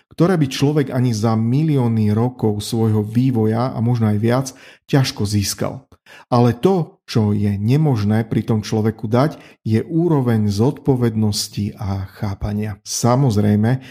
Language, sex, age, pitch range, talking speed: Slovak, male, 40-59, 110-145 Hz, 130 wpm